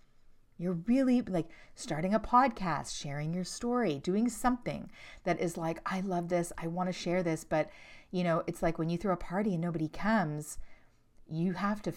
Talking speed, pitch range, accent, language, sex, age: 190 wpm, 165-225 Hz, American, English, female, 40-59